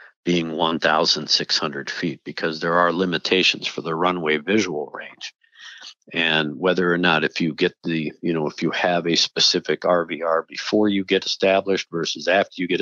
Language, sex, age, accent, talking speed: English, male, 50-69, American, 170 wpm